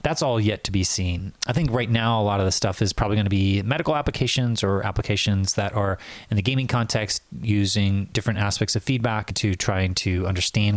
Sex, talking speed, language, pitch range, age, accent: male, 215 wpm, English, 100-115 Hz, 30-49, American